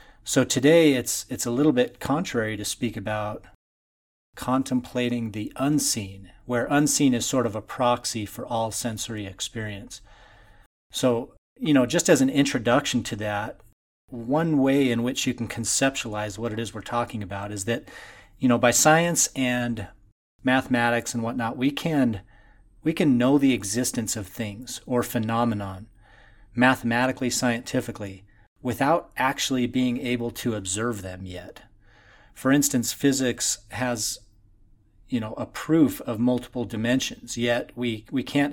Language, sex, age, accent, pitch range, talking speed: English, male, 40-59, American, 105-125 Hz, 145 wpm